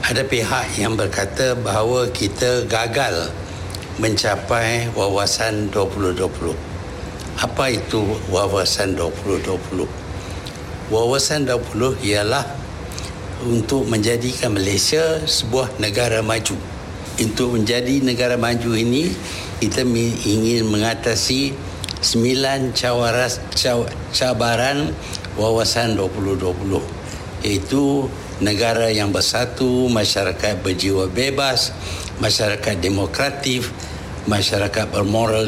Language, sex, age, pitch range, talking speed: Malay, male, 60-79, 95-125 Hz, 80 wpm